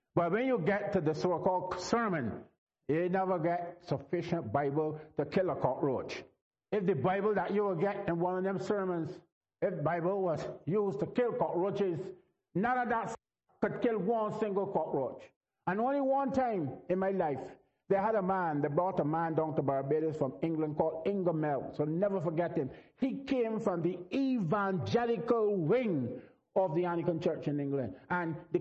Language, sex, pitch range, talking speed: English, male, 145-200 Hz, 175 wpm